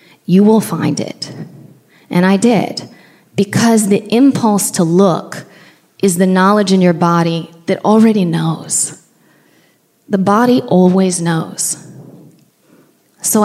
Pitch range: 170-200 Hz